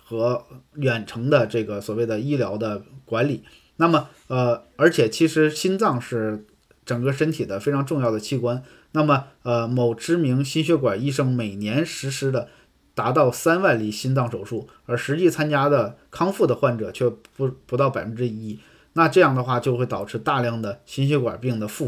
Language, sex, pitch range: Chinese, male, 115-145 Hz